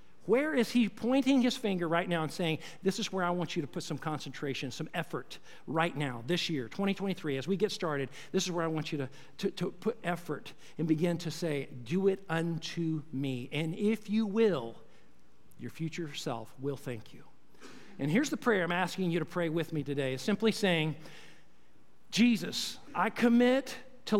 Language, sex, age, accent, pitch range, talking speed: English, male, 50-69, American, 145-220 Hz, 195 wpm